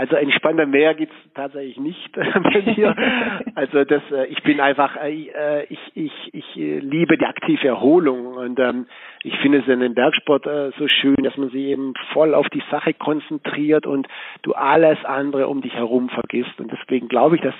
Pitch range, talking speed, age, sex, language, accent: 130-155 Hz, 190 wpm, 50-69, male, German, German